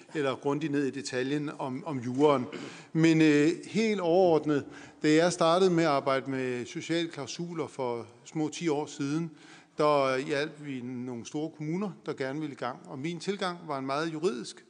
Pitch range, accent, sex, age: 145-180 Hz, native, male, 50-69